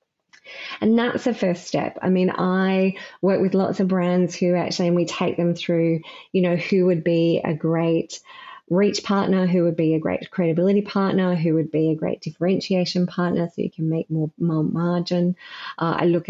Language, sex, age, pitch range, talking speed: English, female, 30-49, 165-200 Hz, 195 wpm